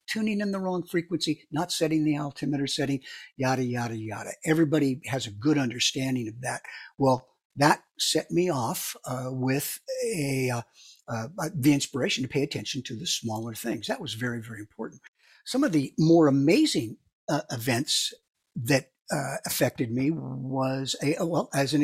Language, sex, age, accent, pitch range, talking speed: English, male, 60-79, American, 135-175 Hz, 165 wpm